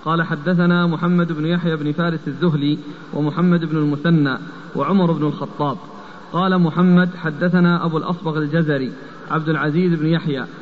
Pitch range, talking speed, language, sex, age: 155-180 Hz, 135 wpm, Arabic, male, 40-59